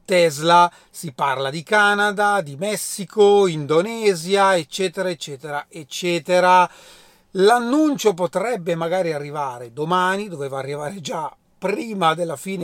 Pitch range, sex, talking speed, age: 160-200 Hz, male, 105 wpm, 40-59